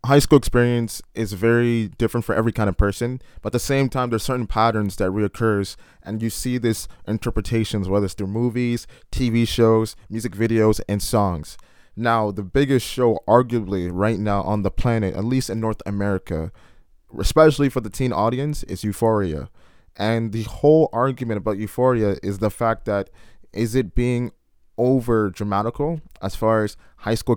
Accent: American